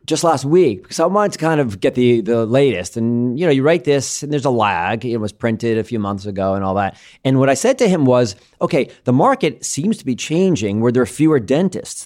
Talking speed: 255 wpm